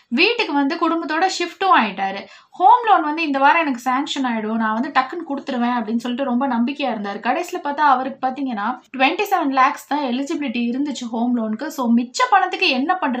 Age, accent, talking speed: 20-39, native, 175 wpm